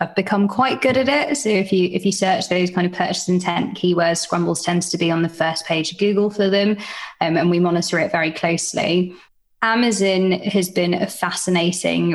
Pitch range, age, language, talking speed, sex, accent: 175-195 Hz, 20-39, English, 205 wpm, female, British